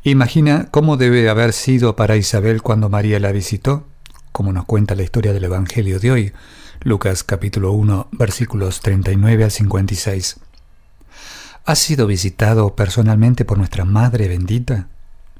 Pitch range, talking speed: 100-125 Hz, 135 wpm